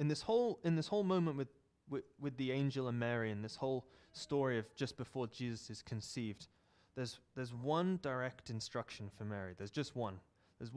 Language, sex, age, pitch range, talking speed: English, male, 20-39, 105-140 Hz, 195 wpm